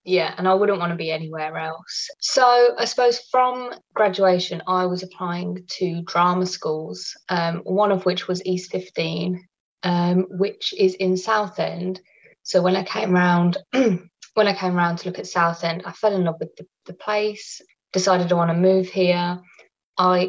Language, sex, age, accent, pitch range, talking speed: English, female, 20-39, British, 170-195 Hz, 175 wpm